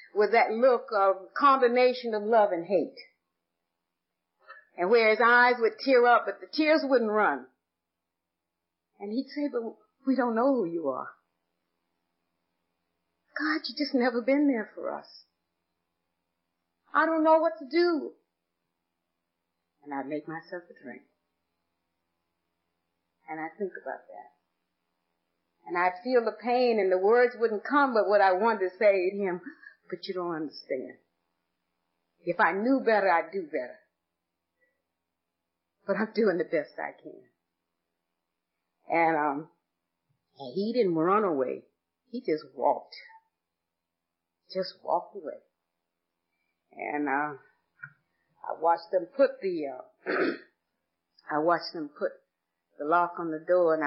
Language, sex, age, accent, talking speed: English, female, 50-69, American, 135 wpm